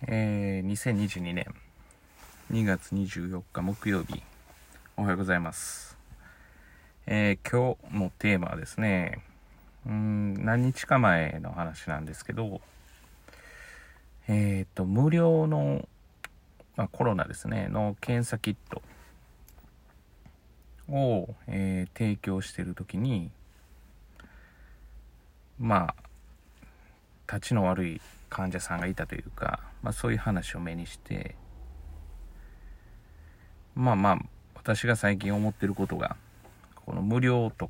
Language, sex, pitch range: Japanese, male, 75-110 Hz